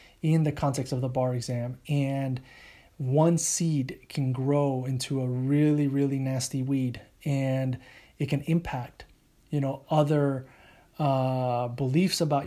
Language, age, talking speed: English, 30-49, 135 wpm